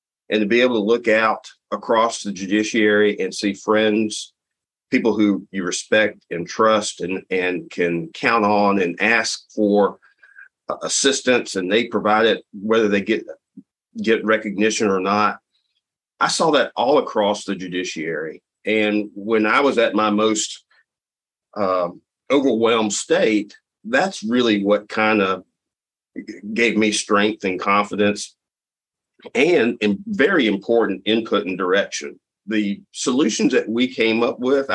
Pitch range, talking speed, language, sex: 100-110 Hz, 140 wpm, English, male